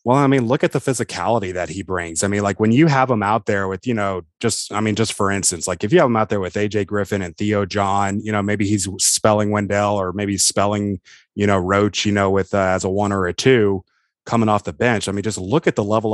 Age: 30-49